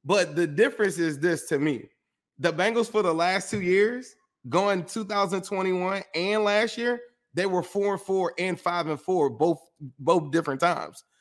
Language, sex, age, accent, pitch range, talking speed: English, male, 20-39, American, 140-180 Hz, 170 wpm